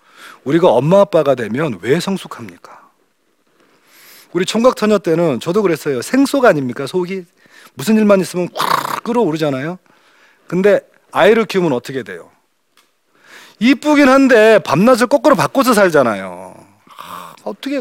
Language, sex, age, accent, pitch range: Korean, male, 40-59, native, 140-220 Hz